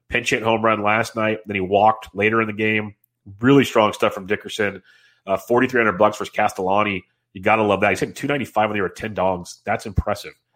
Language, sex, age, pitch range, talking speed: English, male, 30-49, 100-115 Hz, 210 wpm